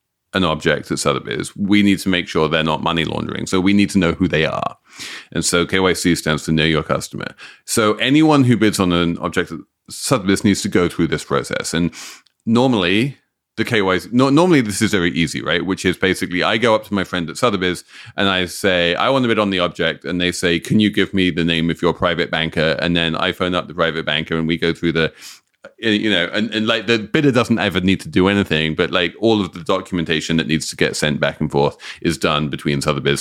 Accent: British